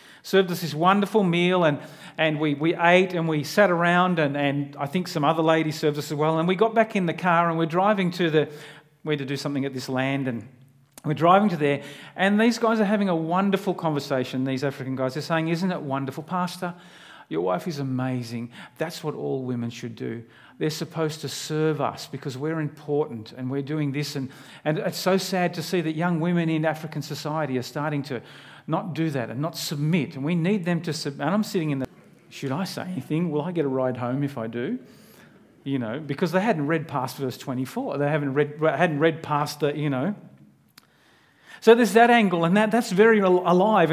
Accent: Australian